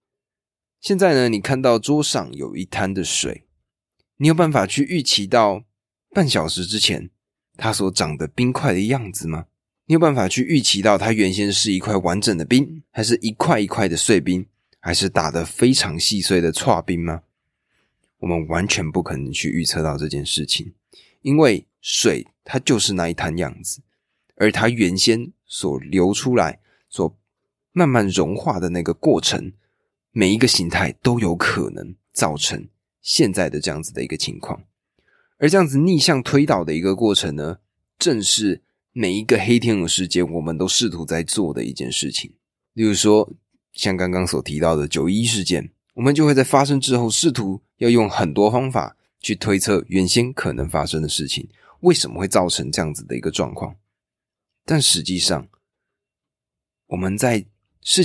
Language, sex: Chinese, male